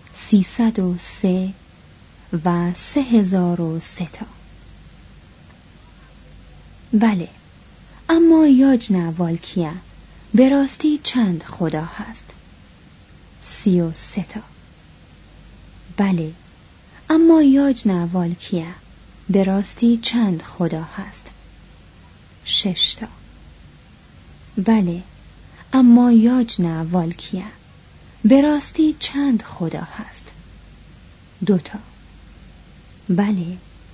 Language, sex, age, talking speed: Persian, female, 30-49, 70 wpm